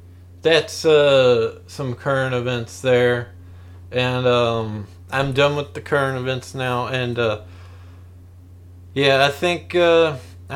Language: English